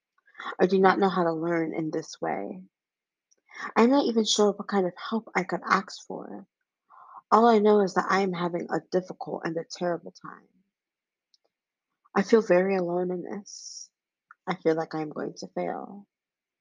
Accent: American